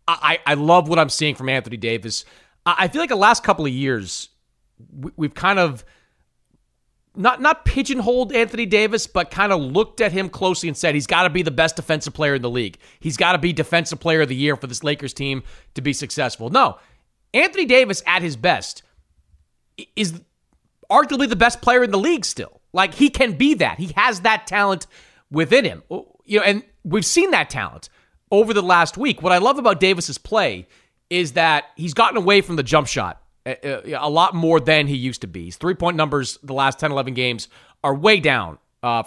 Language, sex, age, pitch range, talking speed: English, male, 30-49, 130-190 Hz, 205 wpm